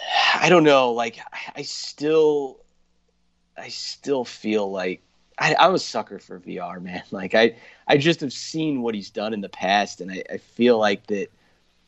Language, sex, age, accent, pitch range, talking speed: English, male, 30-49, American, 100-130 Hz, 175 wpm